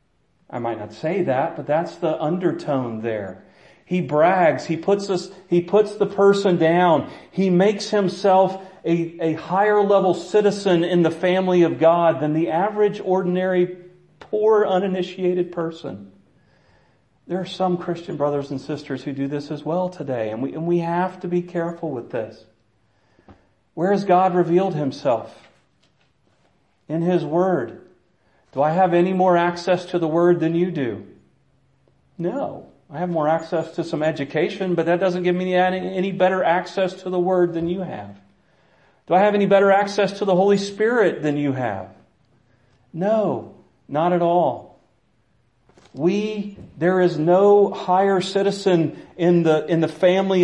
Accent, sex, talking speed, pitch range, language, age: American, male, 160 wpm, 155-185 Hz, English, 40-59